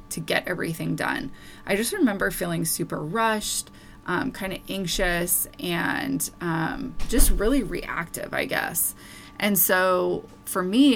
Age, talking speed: 20-39, 135 wpm